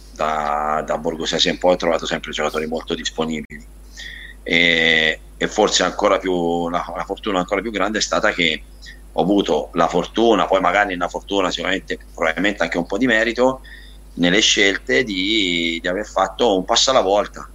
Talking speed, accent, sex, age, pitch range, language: 170 wpm, native, male, 30-49, 85-100 Hz, Italian